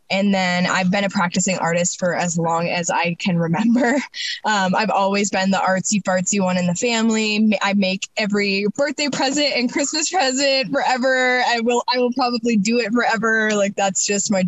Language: English